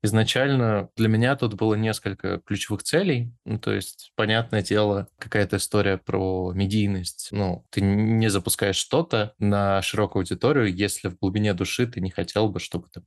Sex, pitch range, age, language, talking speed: male, 90-105 Hz, 20-39, Russian, 160 wpm